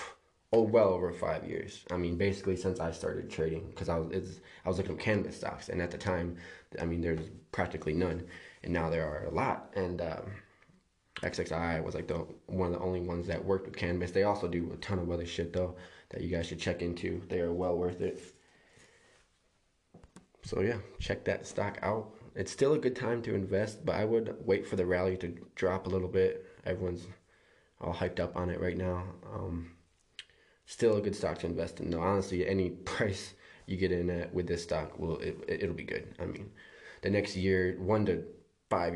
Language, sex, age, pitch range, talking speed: English, male, 20-39, 85-95 Hz, 210 wpm